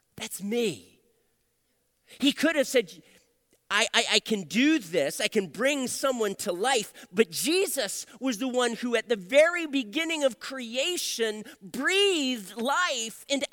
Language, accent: English, American